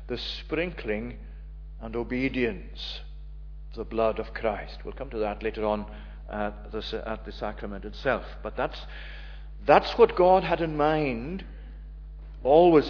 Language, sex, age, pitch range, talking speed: English, male, 50-69, 90-140 Hz, 130 wpm